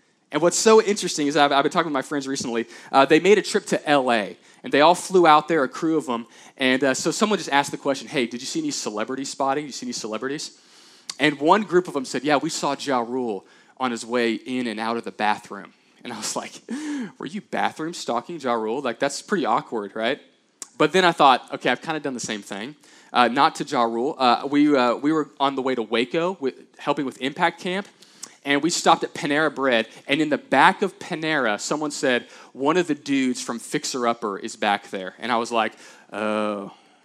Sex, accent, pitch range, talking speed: male, American, 135-195 Hz, 235 wpm